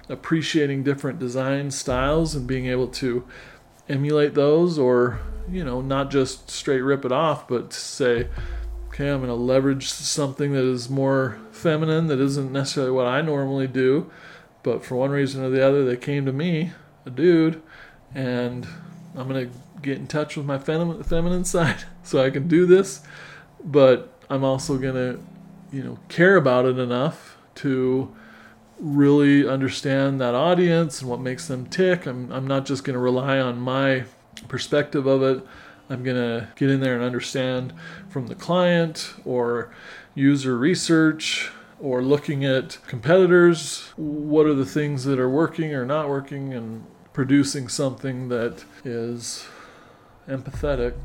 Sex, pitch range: male, 130-150 Hz